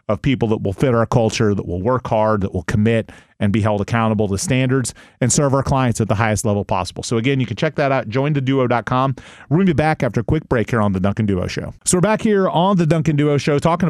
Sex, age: male, 30-49